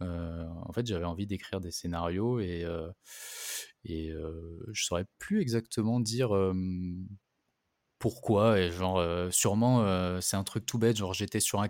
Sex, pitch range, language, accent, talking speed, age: male, 90-115 Hz, French, French, 170 wpm, 20-39